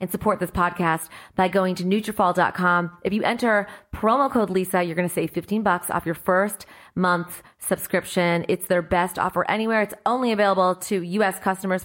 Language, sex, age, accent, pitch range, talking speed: English, female, 30-49, American, 185-235 Hz, 180 wpm